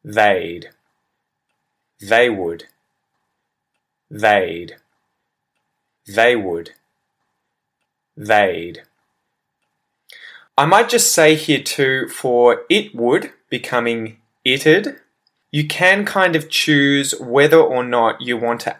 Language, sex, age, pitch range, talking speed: English, male, 20-39, 115-160 Hz, 95 wpm